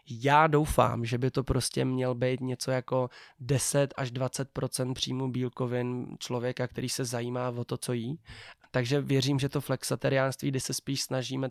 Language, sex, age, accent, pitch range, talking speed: Czech, male, 20-39, native, 125-135 Hz, 165 wpm